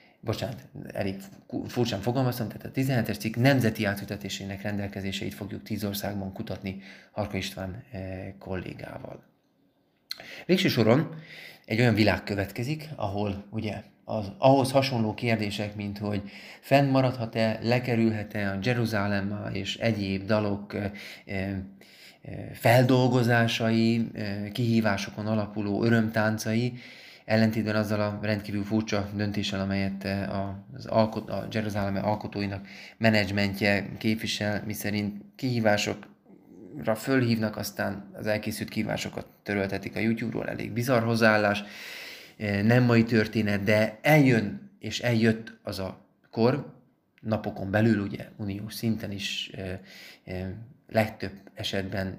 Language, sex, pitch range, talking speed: Hungarian, male, 100-115 Hz, 110 wpm